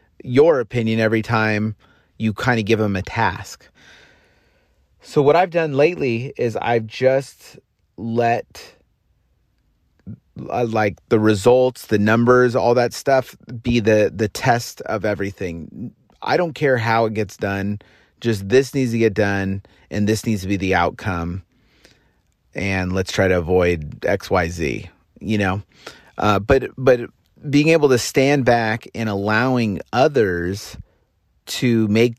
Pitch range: 105-130 Hz